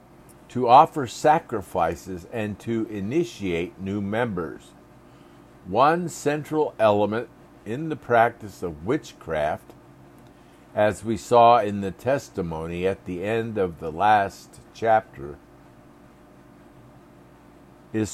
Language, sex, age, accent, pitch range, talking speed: English, male, 50-69, American, 90-120 Hz, 100 wpm